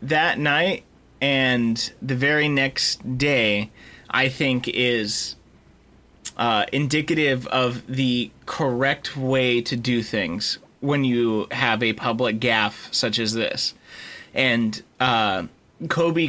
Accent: American